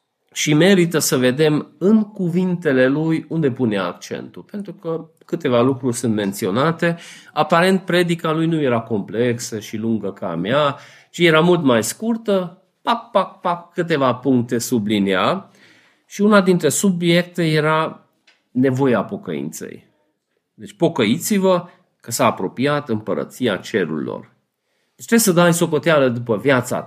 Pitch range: 120-175 Hz